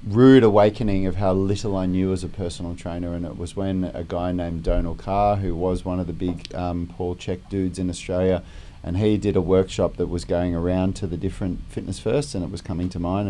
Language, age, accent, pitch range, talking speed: English, 30-49, Australian, 90-100 Hz, 235 wpm